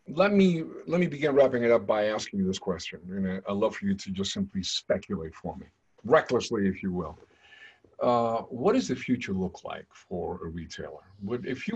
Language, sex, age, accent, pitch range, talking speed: English, male, 50-69, American, 100-160 Hz, 210 wpm